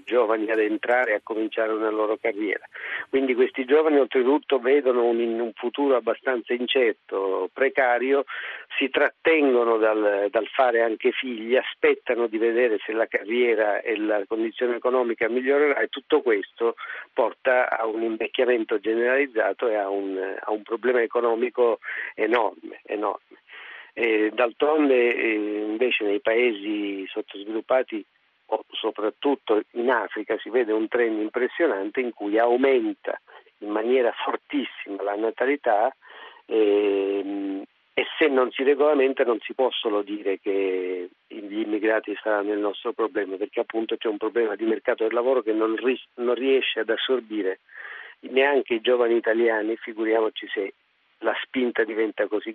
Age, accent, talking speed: 50-69, native, 130 wpm